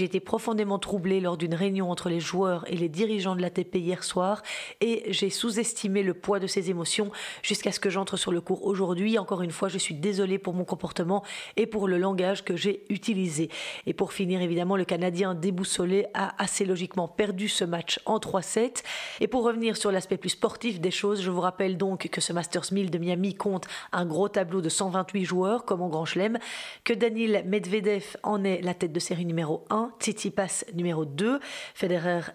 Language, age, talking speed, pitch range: French, 30-49, 205 wpm, 180-210 Hz